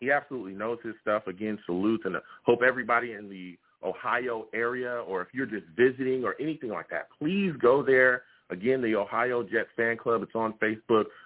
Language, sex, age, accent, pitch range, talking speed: English, male, 40-59, American, 100-130 Hz, 190 wpm